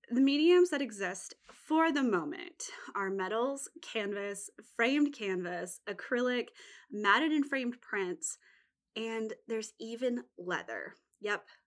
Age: 20-39